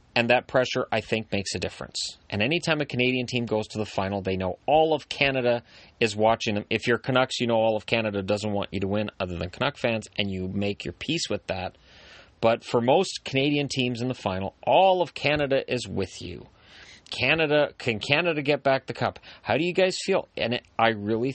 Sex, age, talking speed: male, 30-49, 225 wpm